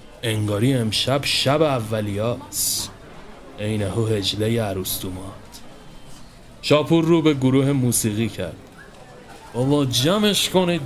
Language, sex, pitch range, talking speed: Persian, male, 105-145 Hz, 100 wpm